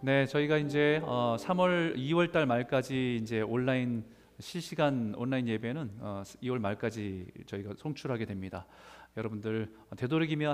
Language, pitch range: Korean, 110-155 Hz